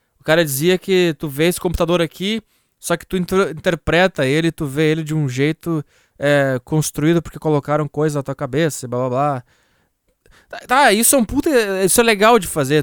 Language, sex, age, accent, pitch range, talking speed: Portuguese, male, 20-39, Brazilian, 150-200 Hz, 200 wpm